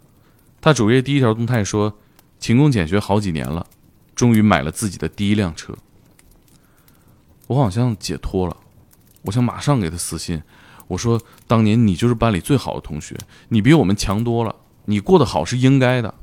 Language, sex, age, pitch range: Chinese, male, 20-39, 85-110 Hz